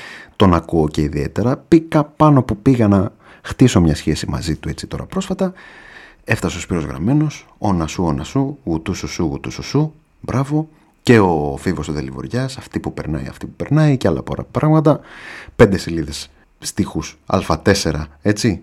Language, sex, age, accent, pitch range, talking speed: Greek, male, 30-49, native, 80-110 Hz, 170 wpm